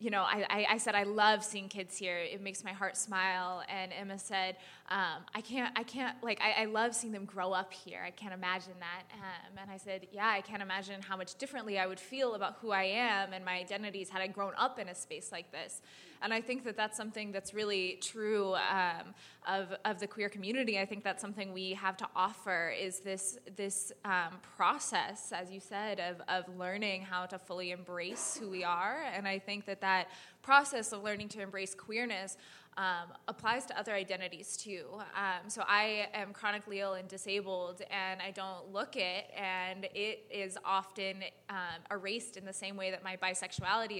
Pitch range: 185-210 Hz